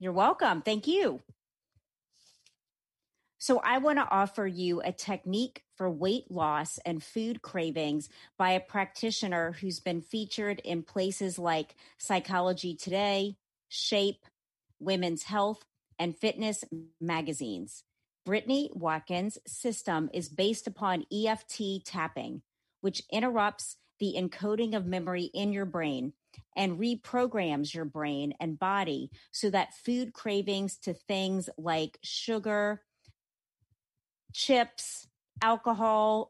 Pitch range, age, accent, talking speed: 175-215 Hz, 40-59, American, 110 wpm